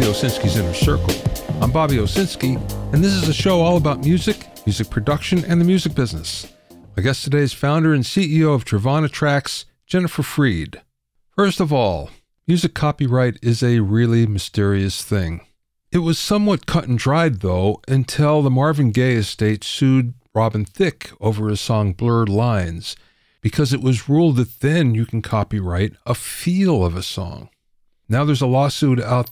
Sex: male